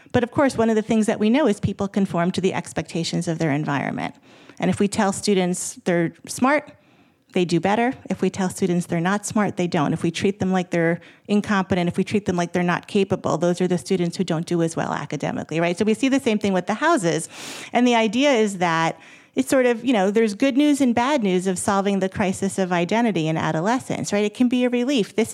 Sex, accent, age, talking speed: female, American, 30-49, 245 wpm